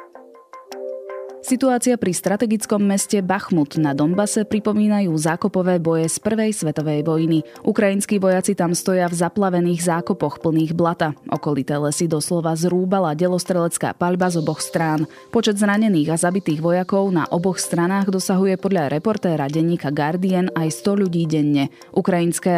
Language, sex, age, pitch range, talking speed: Slovak, female, 20-39, 160-195 Hz, 135 wpm